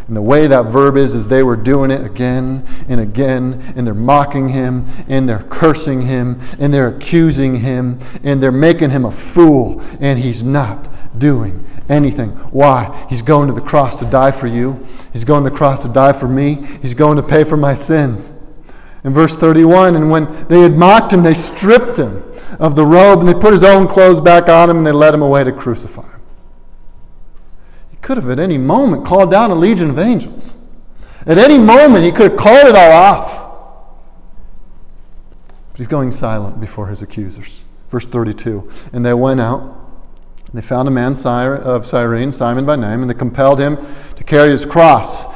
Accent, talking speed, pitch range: American, 195 wpm, 125-155 Hz